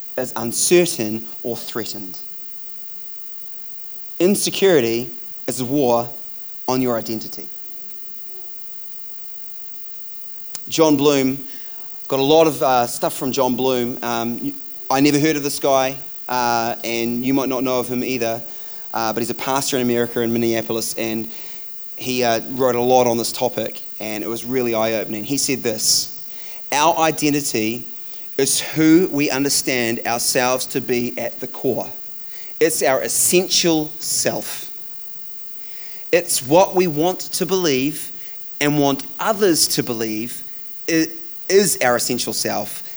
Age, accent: 30-49, Australian